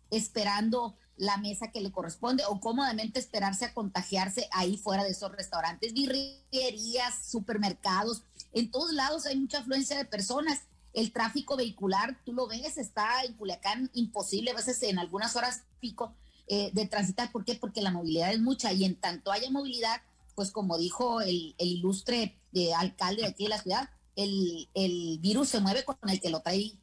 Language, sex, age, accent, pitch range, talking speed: Spanish, female, 40-59, Mexican, 195-240 Hz, 180 wpm